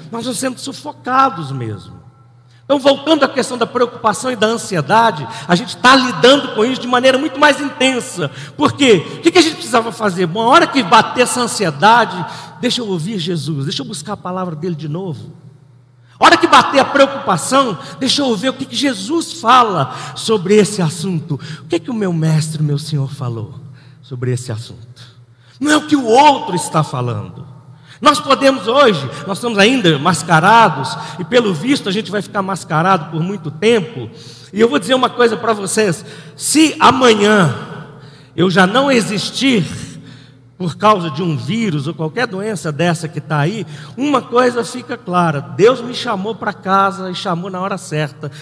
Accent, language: Brazilian, Portuguese